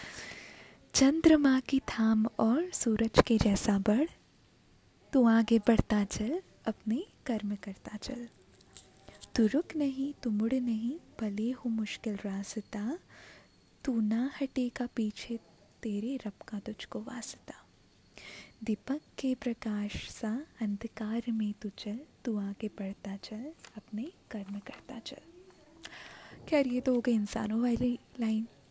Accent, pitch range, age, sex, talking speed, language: native, 220-270 Hz, 20-39, female, 125 wpm, Hindi